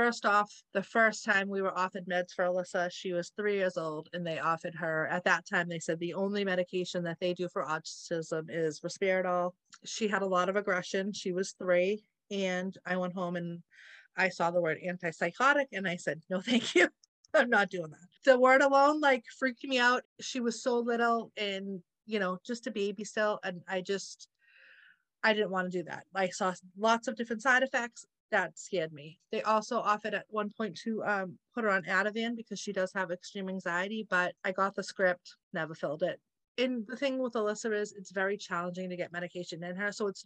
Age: 30-49